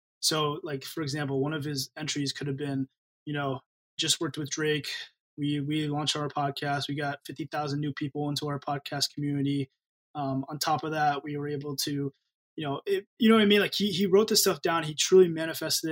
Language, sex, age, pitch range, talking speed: English, male, 20-39, 140-160 Hz, 220 wpm